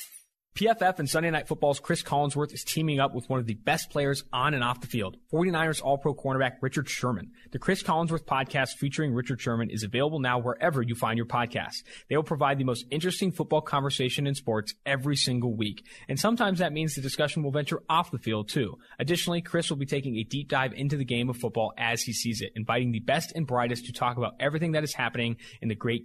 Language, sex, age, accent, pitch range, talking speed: English, male, 20-39, American, 115-150 Hz, 225 wpm